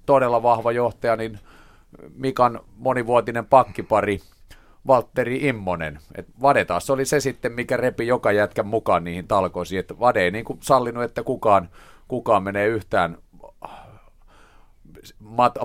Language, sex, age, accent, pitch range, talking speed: Finnish, male, 30-49, native, 90-115 Hz, 130 wpm